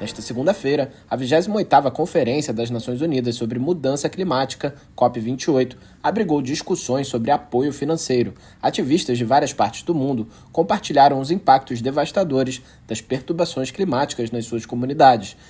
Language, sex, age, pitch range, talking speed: Portuguese, male, 20-39, 125-160 Hz, 130 wpm